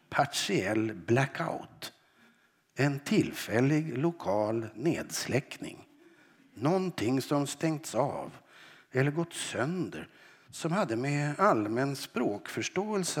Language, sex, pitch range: Swedish, male, 125-160 Hz